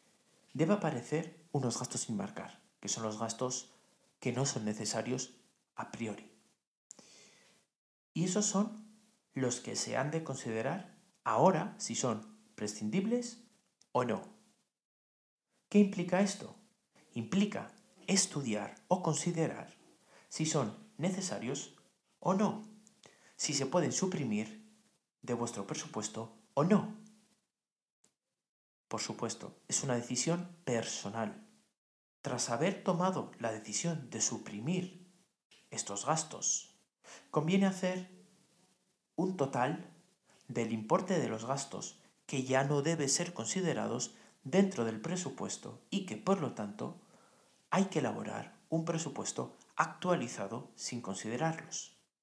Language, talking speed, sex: Spanish, 115 wpm, male